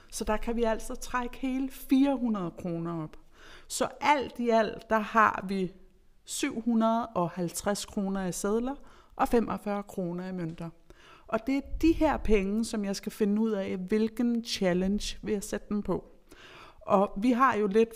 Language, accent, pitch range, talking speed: Danish, native, 190-235 Hz, 165 wpm